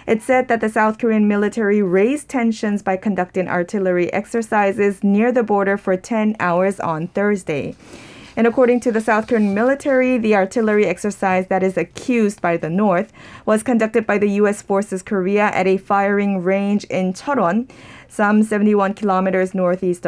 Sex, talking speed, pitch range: female, 160 wpm, 180-220 Hz